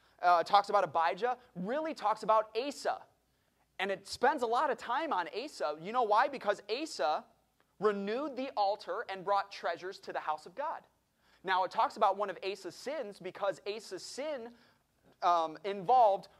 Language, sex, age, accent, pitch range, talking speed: English, male, 30-49, American, 185-250 Hz, 170 wpm